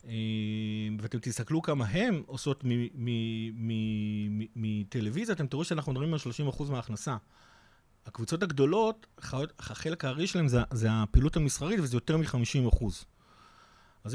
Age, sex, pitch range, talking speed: 30-49, male, 115-145 Hz, 140 wpm